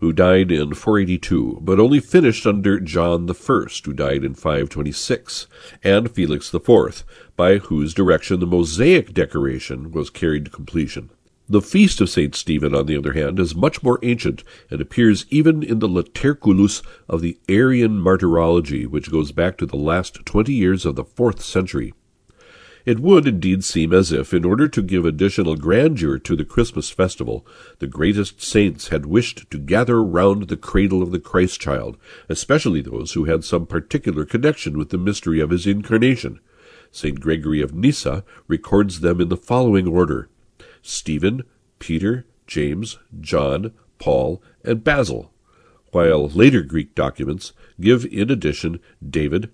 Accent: American